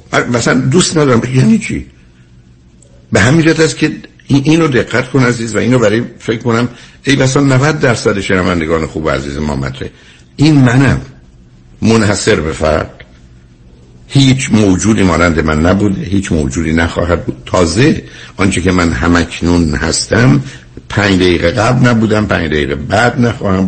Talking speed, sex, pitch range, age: 140 wpm, male, 85-115 Hz, 60-79